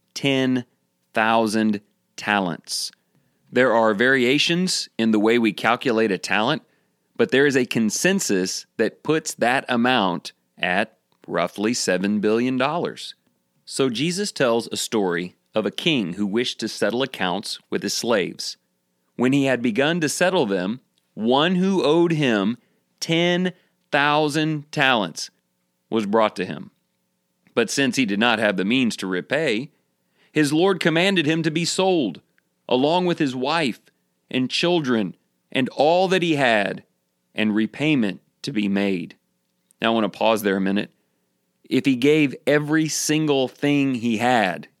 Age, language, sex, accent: 40-59, English, male, American